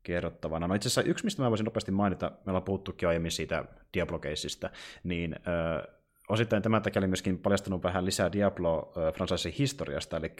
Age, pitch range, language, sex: 30-49, 85-100 Hz, Finnish, male